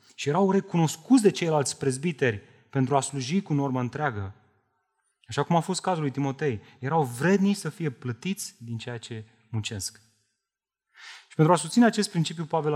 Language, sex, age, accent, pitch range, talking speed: Romanian, male, 30-49, native, 120-150 Hz, 165 wpm